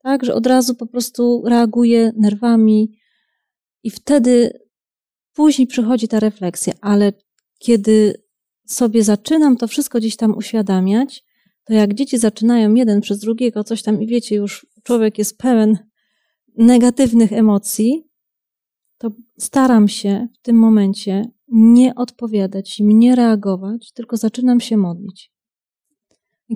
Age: 30-49